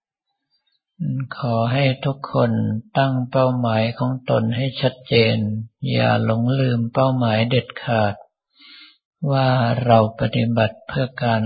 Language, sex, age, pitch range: Thai, male, 60-79, 115-130 Hz